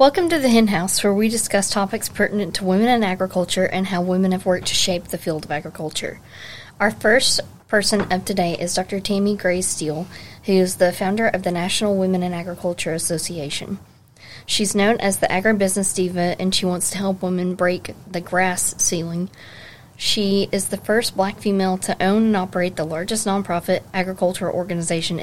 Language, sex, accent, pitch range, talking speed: English, female, American, 175-200 Hz, 180 wpm